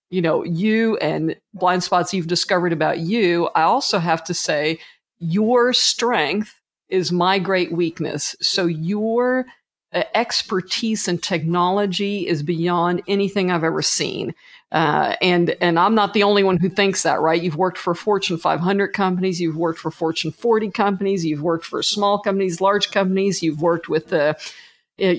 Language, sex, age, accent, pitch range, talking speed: English, female, 50-69, American, 170-210 Hz, 165 wpm